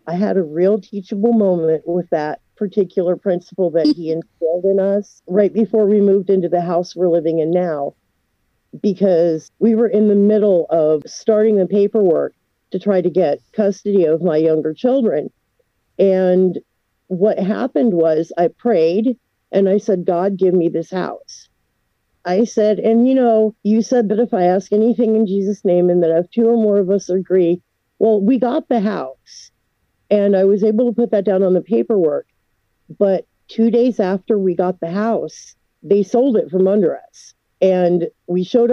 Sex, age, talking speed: female, 50-69, 180 wpm